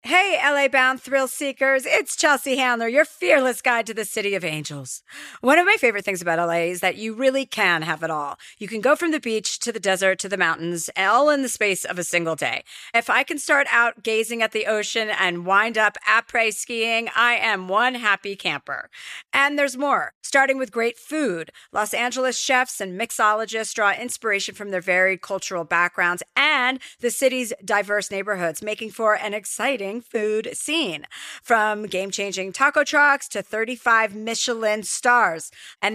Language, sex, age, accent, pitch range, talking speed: English, female, 40-59, American, 195-260 Hz, 180 wpm